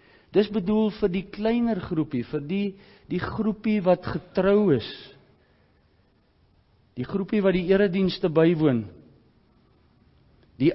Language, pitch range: English, 125-200 Hz